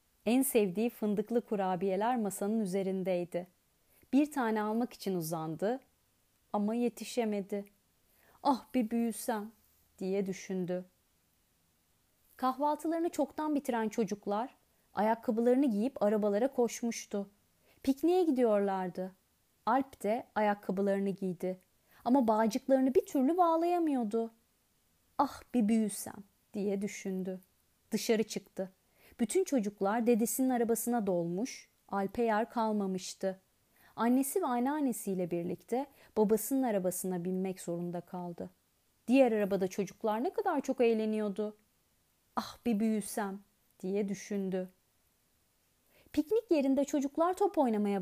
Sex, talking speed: female, 95 wpm